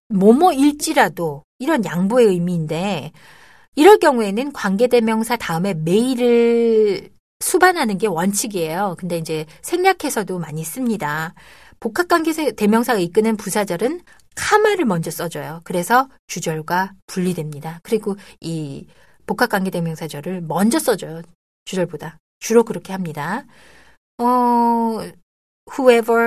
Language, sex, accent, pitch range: Korean, female, native, 170-250 Hz